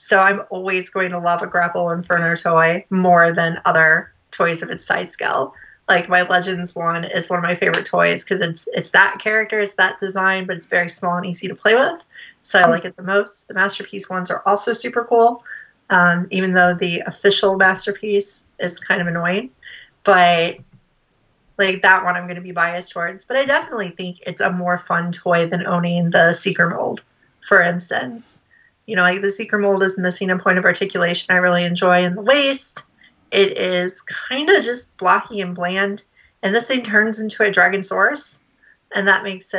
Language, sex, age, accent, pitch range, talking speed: English, female, 30-49, American, 180-205 Hz, 200 wpm